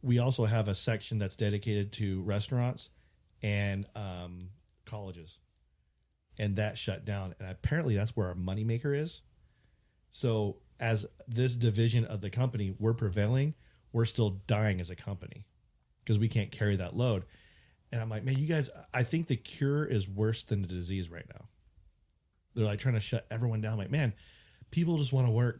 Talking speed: 180 wpm